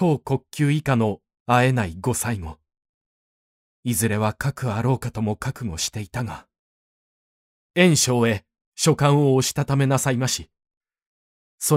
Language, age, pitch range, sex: Japanese, 20-39, 95-140 Hz, male